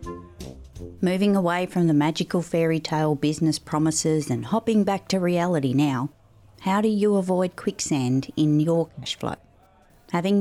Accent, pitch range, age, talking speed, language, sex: Australian, 145-180 Hz, 30-49, 145 wpm, English, female